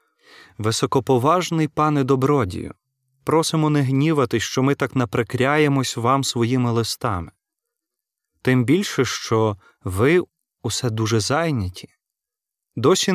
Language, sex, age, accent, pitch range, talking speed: Ukrainian, male, 30-49, native, 115-155 Hz, 95 wpm